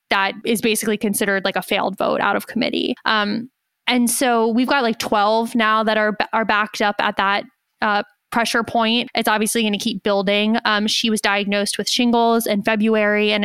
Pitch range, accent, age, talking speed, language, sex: 205-235 Hz, American, 20-39, 195 wpm, English, female